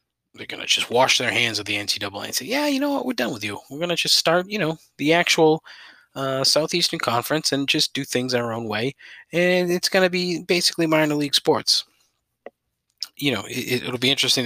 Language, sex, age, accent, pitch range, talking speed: English, male, 20-39, American, 115-150 Hz, 220 wpm